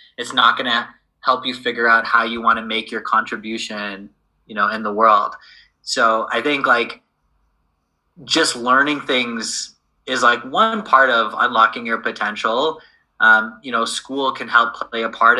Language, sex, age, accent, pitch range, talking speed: English, male, 20-39, American, 110-130 Hz, 165 wpm